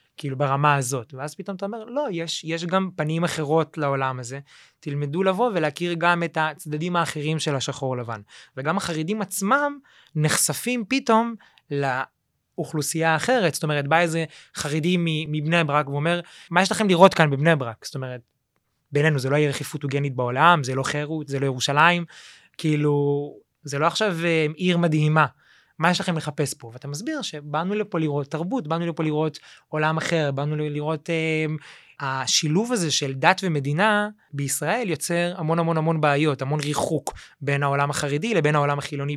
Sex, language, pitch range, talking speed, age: male, Hebrew, 145-170 Hz, 160 wpm, 20-39